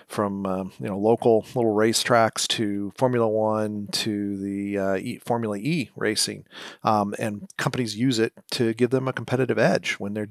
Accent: American